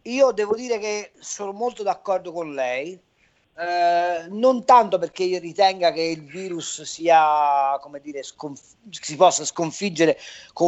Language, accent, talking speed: Italian, native, 140 wpm